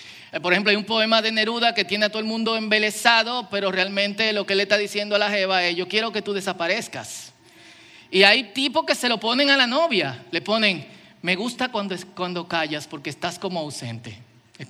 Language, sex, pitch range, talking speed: Spanish, male, 195-260 Hz, 210 wpm